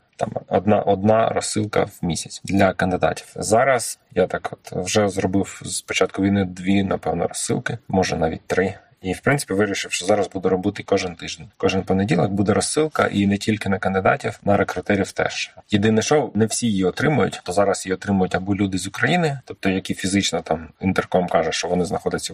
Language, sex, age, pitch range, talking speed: Ukrainian, male, 20-39, 95-110 Hz, 185 wpm